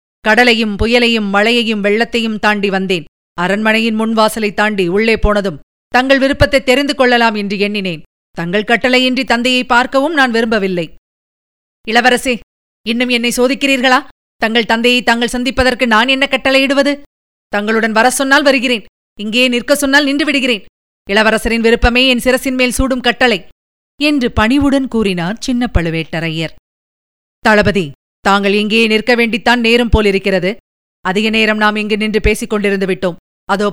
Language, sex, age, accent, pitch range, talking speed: Tamil, female, 30-49, native, 200-270 Hz, 125 wpm